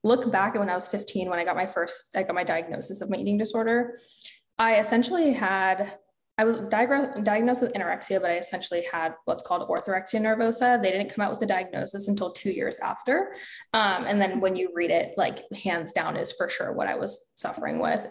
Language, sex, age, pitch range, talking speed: English, female, 10-29, 190-230 Hz, 215 wpm